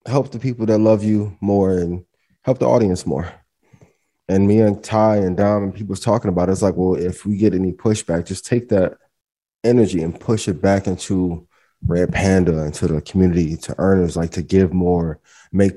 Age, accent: 20-39, American